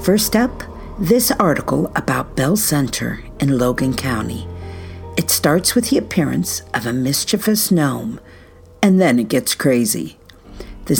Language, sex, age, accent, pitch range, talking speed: English, female, 50-69, American, 140-215 Hz, 135 wpm